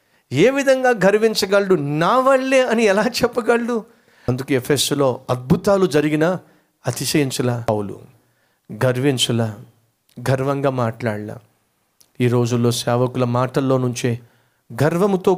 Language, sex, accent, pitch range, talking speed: Telugu, male, native, 125-165 Hz, 85 wpm